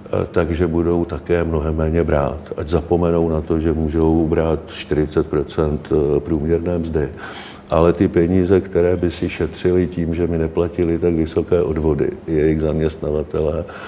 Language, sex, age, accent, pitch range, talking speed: Czech, male, 50-69, native, 85-95 Hz, 140 wpm